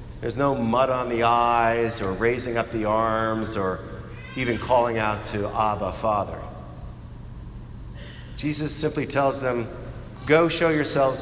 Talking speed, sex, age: 135 wpm, male, 40-59